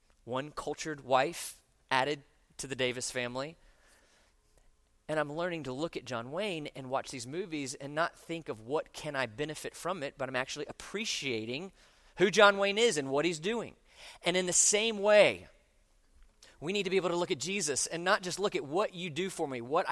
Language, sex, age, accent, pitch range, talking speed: English, male, 30-49, American, 125-180 Hz, 200 wpm